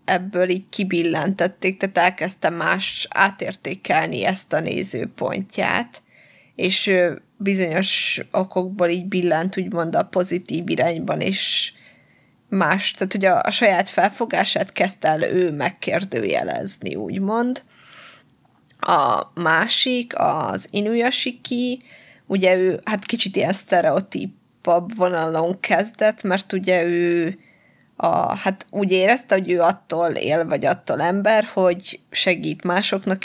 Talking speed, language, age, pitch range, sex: 110 wpm, Hungarian, 20-39, 175-195 Hz, female